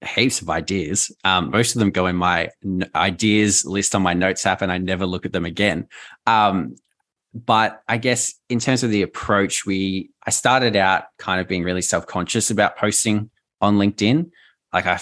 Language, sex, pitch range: English, male, 90-110 Hz